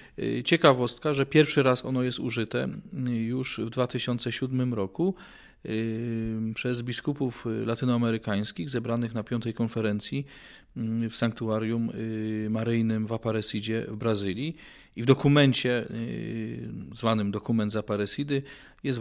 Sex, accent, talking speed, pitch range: male, native, 105 wpm, 110-130 Hz